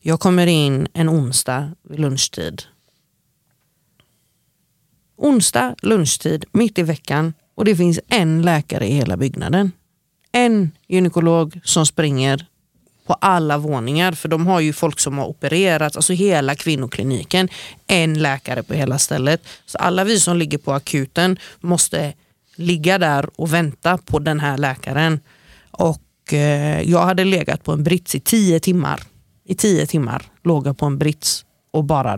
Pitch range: 135-175 Hz